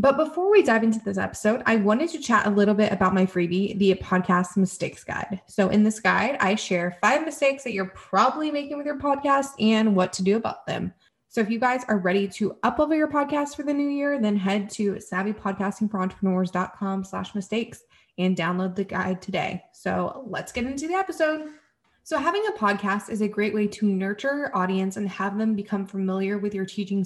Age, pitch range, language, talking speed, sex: 20-39, 185-235 Hz, English, 205 wpm, female